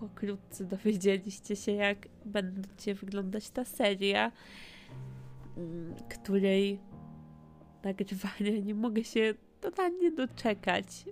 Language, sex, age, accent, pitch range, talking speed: Polish, female, 20-39, native, 140-210 Hz, 85 wpm